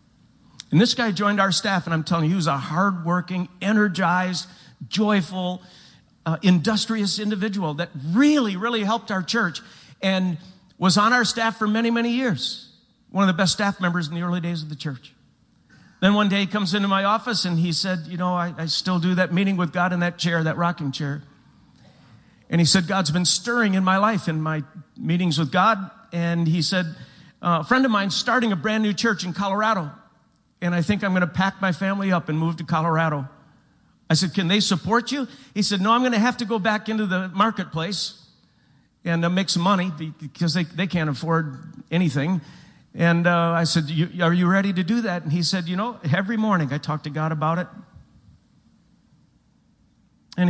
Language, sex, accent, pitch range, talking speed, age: English, male, American, 170-210 Hz, 200 wpm, 50-69